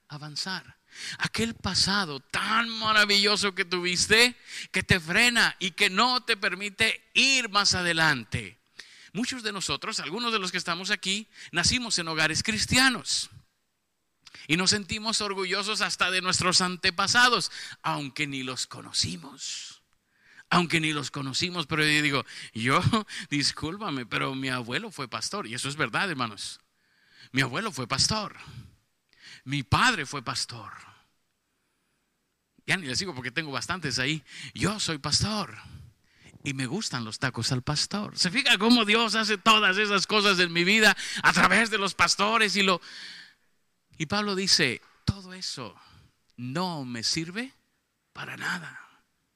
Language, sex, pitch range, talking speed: Spanish, male, 150-210 Hz, 140 wpm